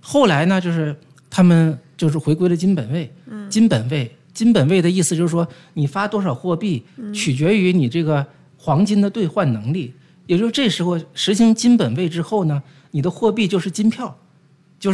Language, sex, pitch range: Chinese, male, 150-200 Hz